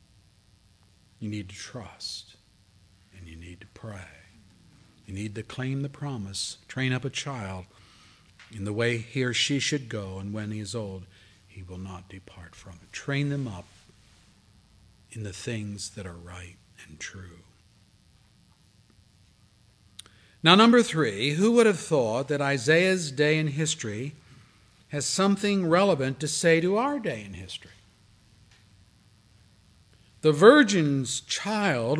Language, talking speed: English, 140 wpm